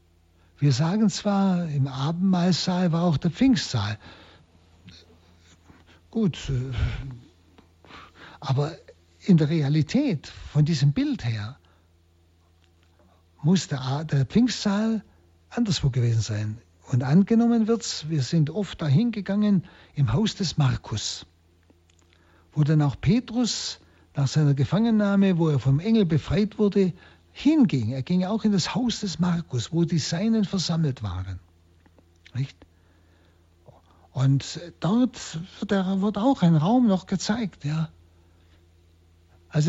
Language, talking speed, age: German, 115 wpm, 60-79